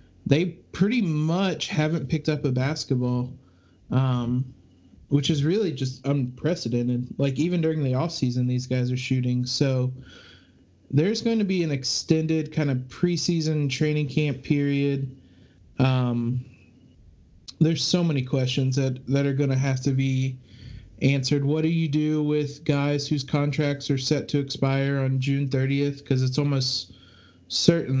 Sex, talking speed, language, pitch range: male, 150 wpm, English, 125-145 Hz